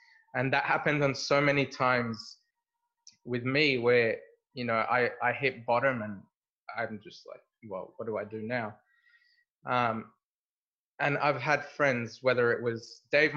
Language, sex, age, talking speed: English, male, 20-39, 155 wpm